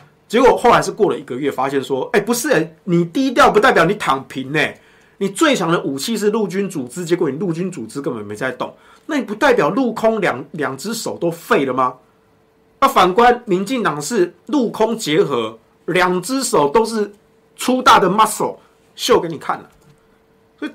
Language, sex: Chinese, male